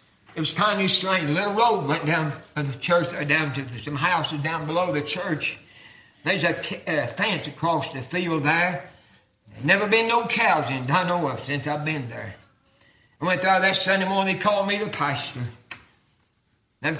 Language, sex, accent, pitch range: English, male, American, 145-185 Hz